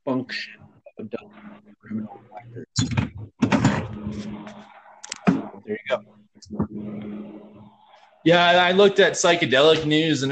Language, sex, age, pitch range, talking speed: English, male, 20-39, 105-145 Hz, 85 wpm